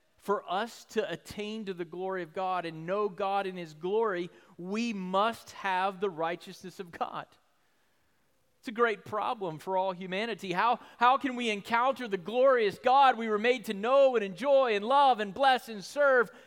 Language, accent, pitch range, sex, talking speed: English, American, 200-255 Hz, male, 180 wpm